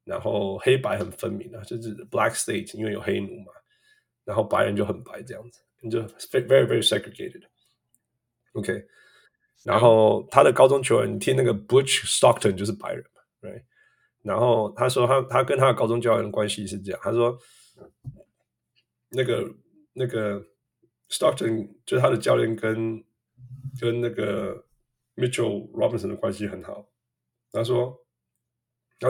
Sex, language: male, Chinese